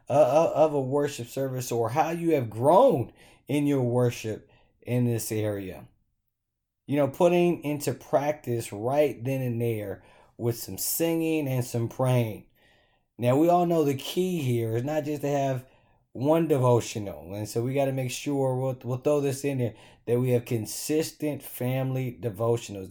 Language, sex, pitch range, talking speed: English, male, 115-145 Hz, 170 wpm